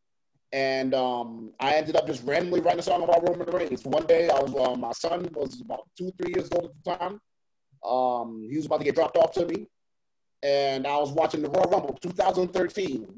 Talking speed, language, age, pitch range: 205 wpm, English, 30-49, 150-190 Hz